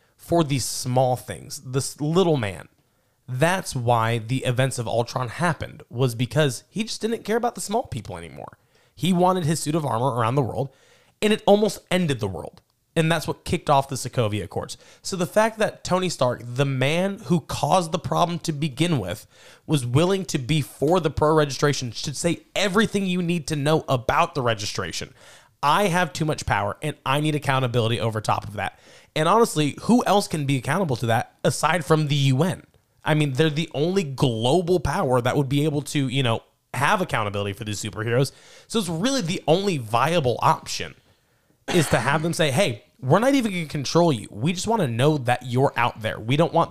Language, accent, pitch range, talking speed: English, American, 120-170 Hz, 205 wpm